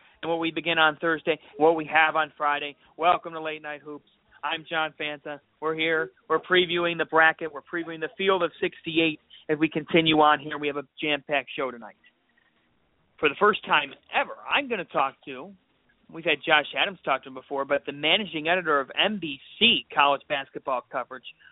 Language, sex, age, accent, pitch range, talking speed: English, male, 40-59, American, 145-190 Hz, 195 wpm